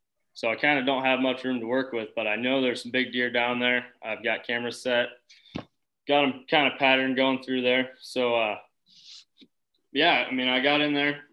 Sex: male